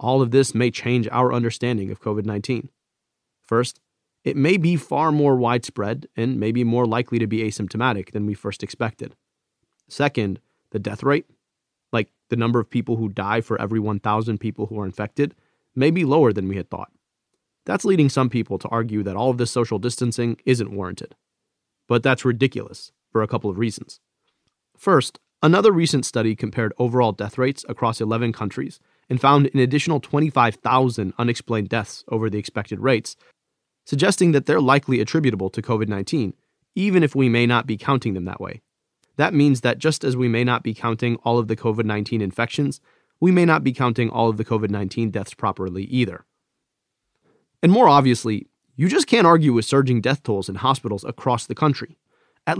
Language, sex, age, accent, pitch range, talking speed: English, male, 30-49, American, 110-135 Hz, 180 wpm